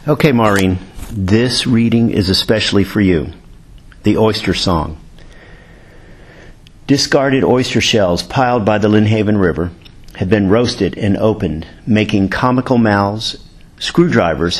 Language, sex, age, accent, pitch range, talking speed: English, male, 50-69, American, 95-110 Hz, 115 wpm